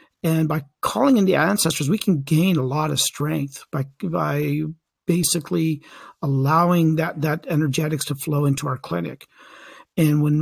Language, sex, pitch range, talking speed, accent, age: English, male, 150-175 Hz, 155 wpm, American, 50-69